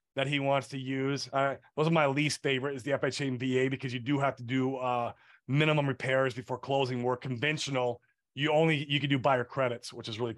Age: 30-49